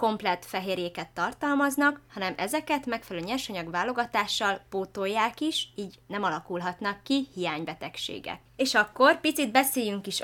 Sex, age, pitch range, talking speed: female, 20-39, 175-235 Hz, 115 wpm